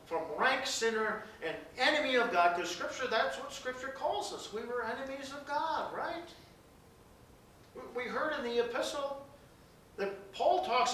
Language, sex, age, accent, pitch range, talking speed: English, male, 50-69, American, 170-255 Hz, 155 wpm